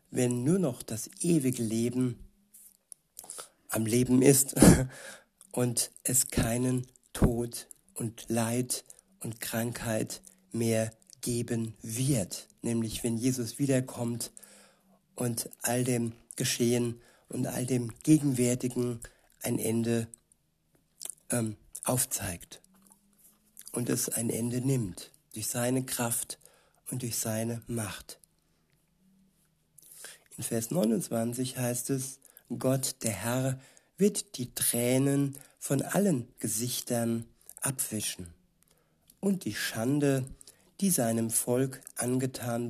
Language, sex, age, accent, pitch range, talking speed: German, male, 60-79, German, 115-135 Hz, 95 wpm